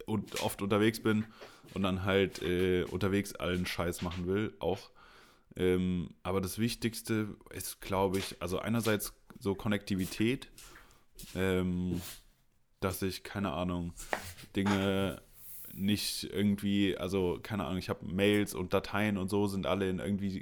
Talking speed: 135 wpm